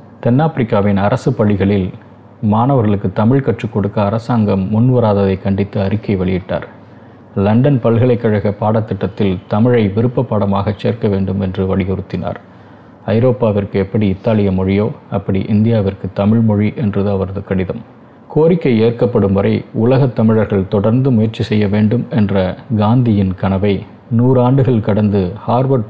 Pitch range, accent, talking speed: 100-120 Hz, native, 110 wpm